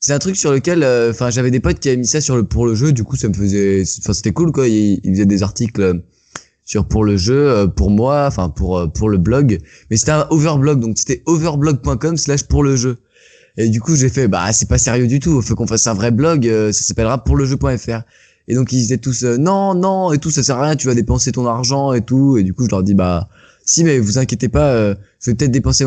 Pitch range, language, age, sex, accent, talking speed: 110-135 Hz, French, 20-39, male, French, 275 wpm